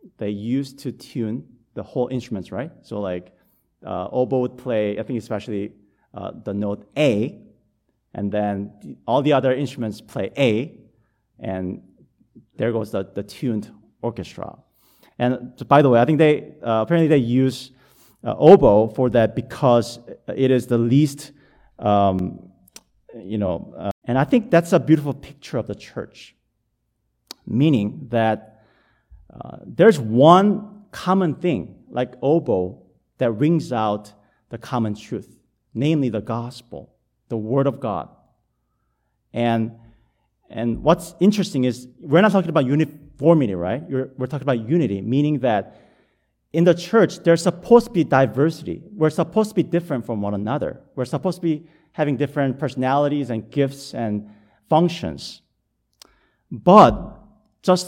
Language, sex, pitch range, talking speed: English, male, 110-155 Hz, 145 wpm